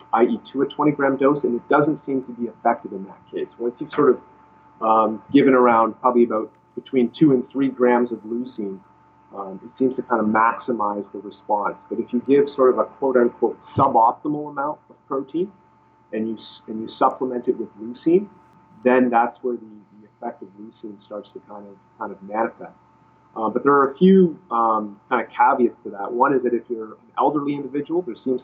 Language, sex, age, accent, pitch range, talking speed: English, male, 30-49, American, 105-130 Hz, 200 wpm